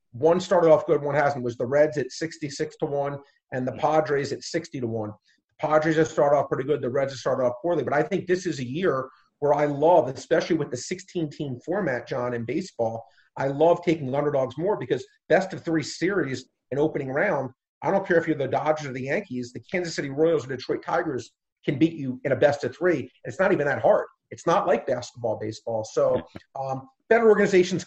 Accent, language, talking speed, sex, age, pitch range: American, English, 220 wpm, male, 40-59, 140-180 Hz